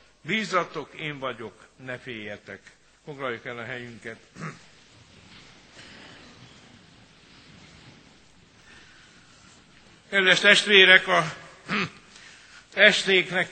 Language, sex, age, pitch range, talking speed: Hungarian, male, 60-79, 155-180 Hz, 60 wpm